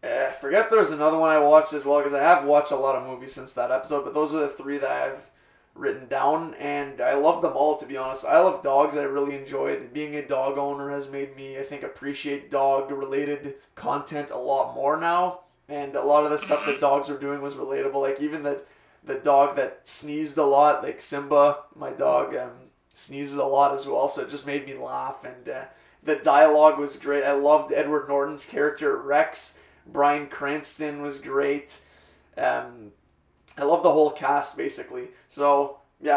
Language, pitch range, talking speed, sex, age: English, 140-150 Hz, 205 wpm, male, 20-39